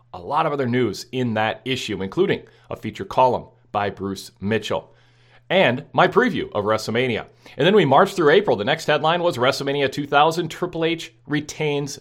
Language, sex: English, male